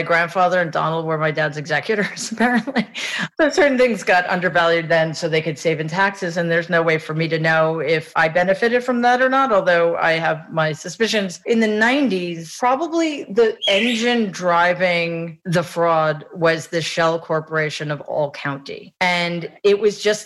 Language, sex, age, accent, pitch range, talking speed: English, female, 40-59, American, 165-200 Hz, 180 wpm